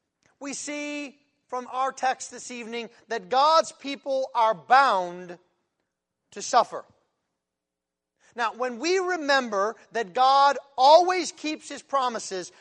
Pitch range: 215-305 Hz